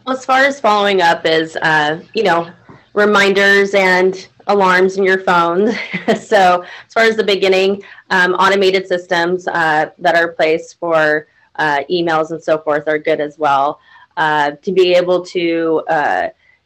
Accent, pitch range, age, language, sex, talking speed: American, 155-185 Hz, 20-39, English, female, 160 wpm